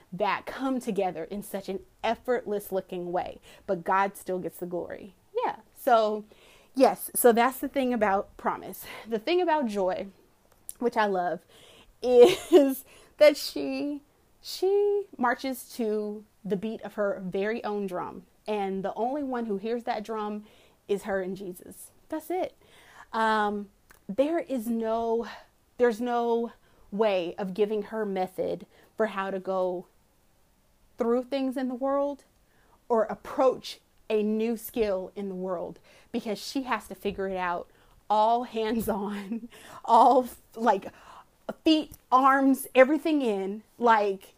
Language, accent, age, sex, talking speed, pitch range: English, American, 30-49, female, 140 wpm, 200-260 Hz